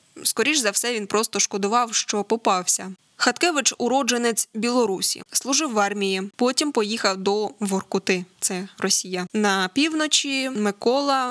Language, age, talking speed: Ukrainian, 20-39, 120 wpm